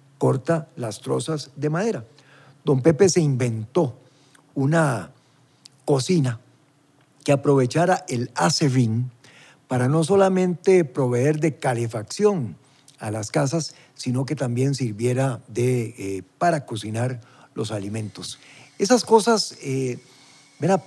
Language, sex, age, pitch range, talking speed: Spanish, male, 50-69, 125-170 Hz, 110 wpm